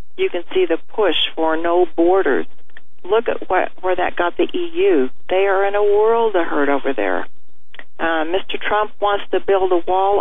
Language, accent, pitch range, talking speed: English, American, 160-205 Hz, 195 wpm